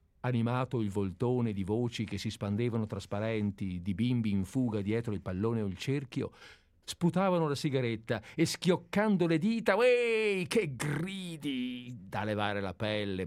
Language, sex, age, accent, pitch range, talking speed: Italian, male, 50-69, native, 90-130 Hz, 150 wpm